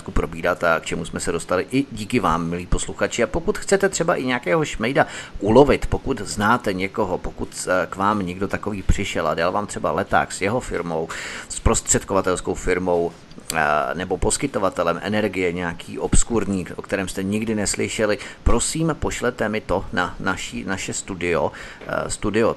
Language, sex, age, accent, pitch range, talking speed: Czech, male, 30-49, native, 90-110 Hz, 150 wpm